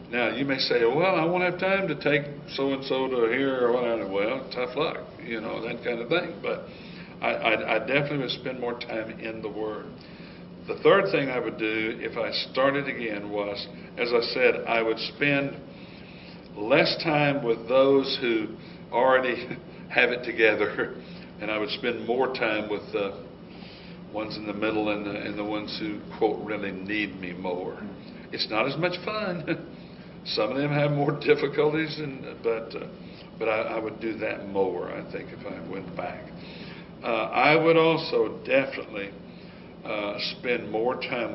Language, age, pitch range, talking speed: English, 60-79, 105-145 Hz, 175 wpm